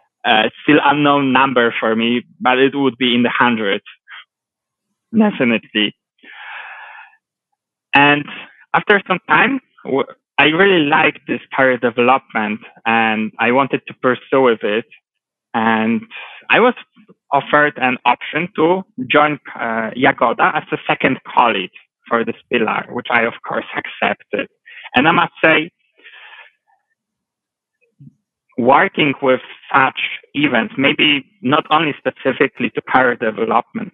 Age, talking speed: 20-39, 120 wpm